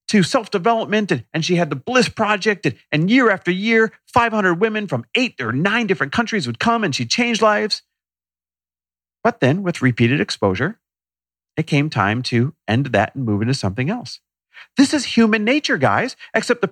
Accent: American